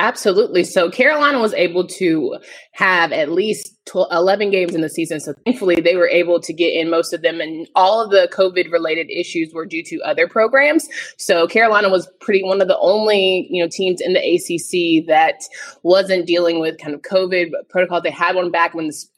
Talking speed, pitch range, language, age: 210 wpm, 170-215 Hz, English, 20-39